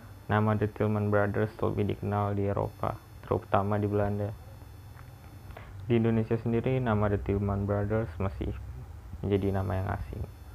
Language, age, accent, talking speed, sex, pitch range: Indonesian, 20-39, native, 130 wpm, male, 95-105 Hz